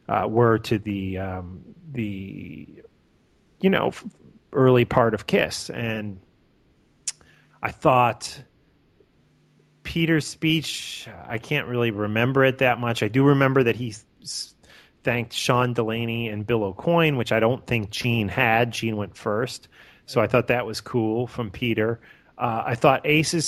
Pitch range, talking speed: 105-125 Hz, 145 wpm